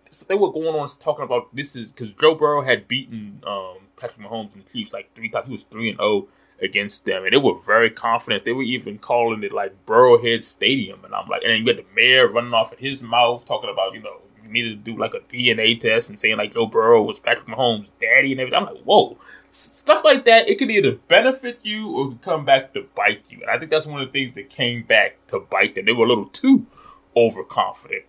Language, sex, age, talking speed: English, male, 20-39, 250 wpm